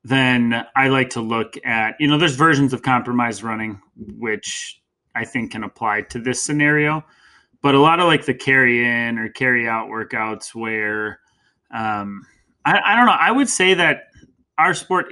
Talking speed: 180 wpm